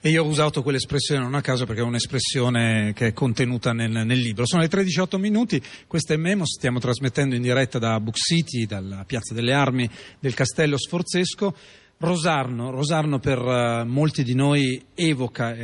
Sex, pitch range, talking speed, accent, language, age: male, 110-135 Hz, 175 wpm, native, Italian, 40-59